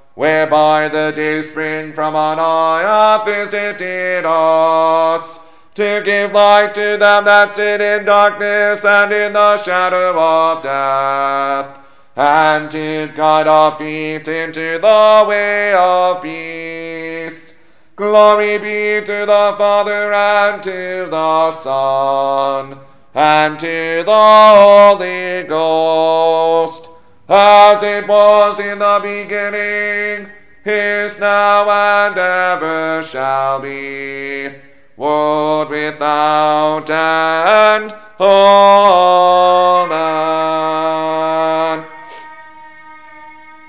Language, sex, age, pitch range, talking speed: English, male, 40-59, 155-205 Hz, 90 wpm